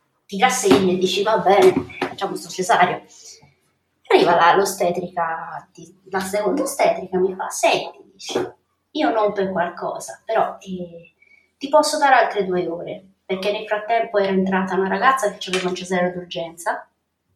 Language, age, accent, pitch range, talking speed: Italian, 20-39, native, 185-230 Hz, 140 wpm